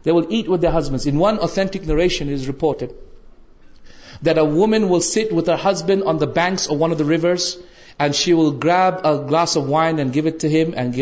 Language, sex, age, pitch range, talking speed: Urdu, male, 40-59, 150-190 Hz, 230 wpm